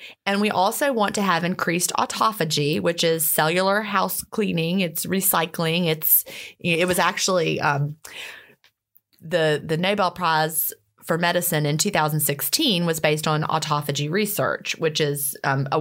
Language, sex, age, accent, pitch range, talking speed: English, female, 30-49, American, 155-205 Hz, 150 wpm